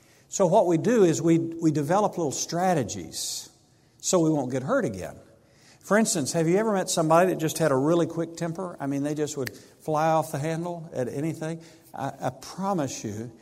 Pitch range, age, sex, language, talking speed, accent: 135-175 Hz, 50-69, male, English, 200 wpm, American